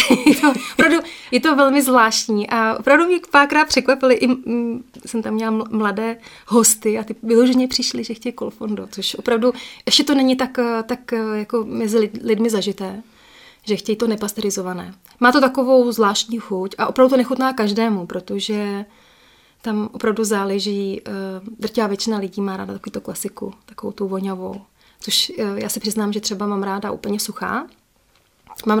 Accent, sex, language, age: native, female, Czech, 30-49